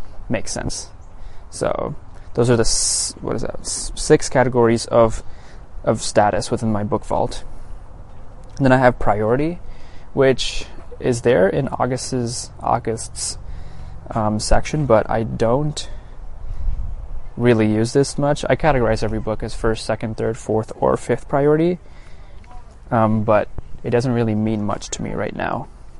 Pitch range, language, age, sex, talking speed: 105-120 Hz, English, 20-39, male, 140 wpm